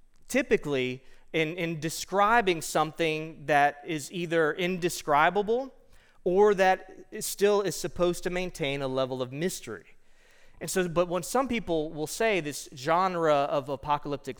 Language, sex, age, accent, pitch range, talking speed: English, male, 30-49, American, 145-180 Hz, 140 wpm